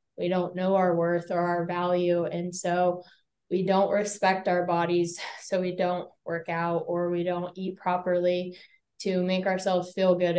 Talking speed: 175 wpm